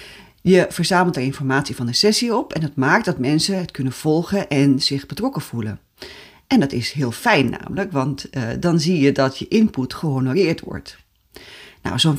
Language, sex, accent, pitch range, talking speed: Dutch, female, Dutch, 130-165 Hz, 185 wpm